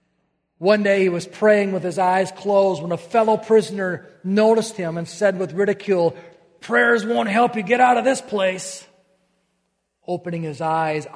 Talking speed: 165 wpm